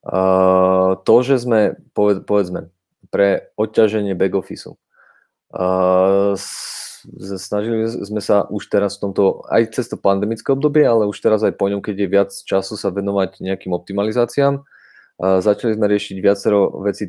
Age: 20-39